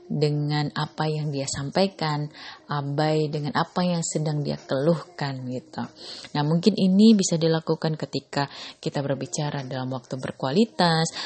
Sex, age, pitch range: female, 20-39, 150-220 Hz